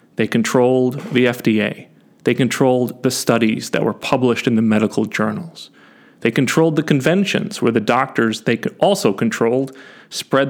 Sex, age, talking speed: male, 40-59, 155 wpm